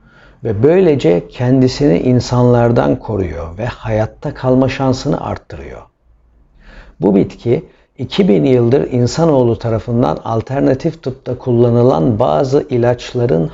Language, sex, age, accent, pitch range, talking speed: Turkish, male, 60-79, native, 105-135 Hz, 95 wpm